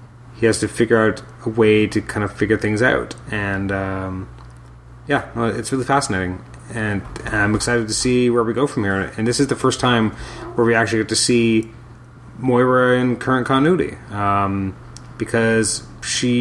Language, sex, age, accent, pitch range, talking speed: English, male, 30-49, American, 100-120 Hz, 180 wpm